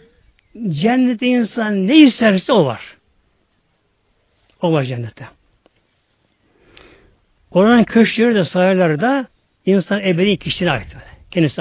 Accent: native